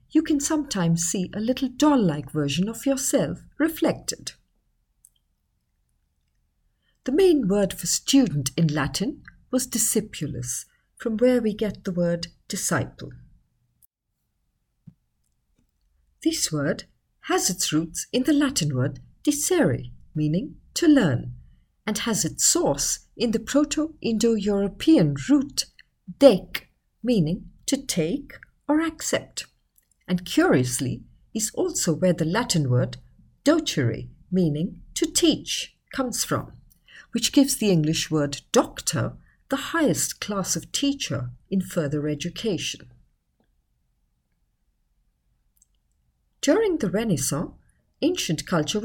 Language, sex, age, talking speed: English, female, 50-69, 105 wpm